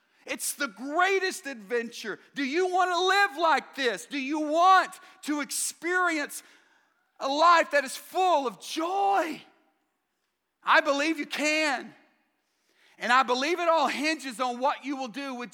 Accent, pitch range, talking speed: American, 225-285 Hz, 150 wpm